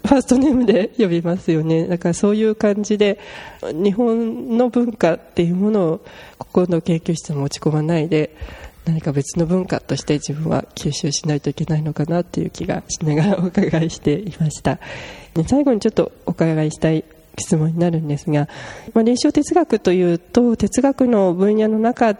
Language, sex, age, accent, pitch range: Japanese, female, 20-39, native, 155-210 Hz